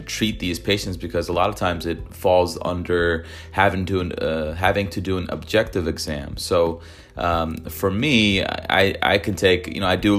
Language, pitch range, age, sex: English, 80-90 Hz, 30-49, male